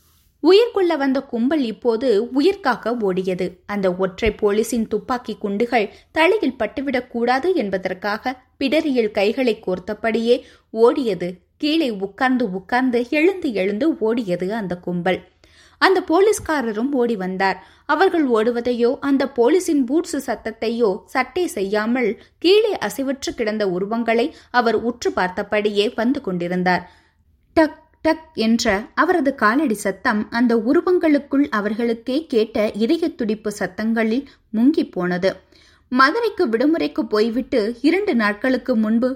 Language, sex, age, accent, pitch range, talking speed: Tamil, female, 20-39, native, 210-285 Hz, 95 wpm